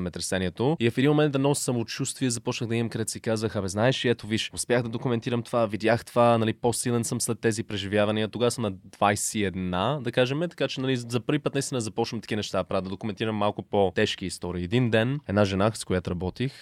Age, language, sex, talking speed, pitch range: 20-39, Bulgarian, male, 215 wpm, 95-115 Hz